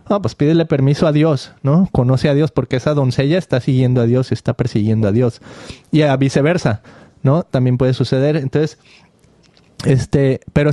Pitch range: 125-155 Hz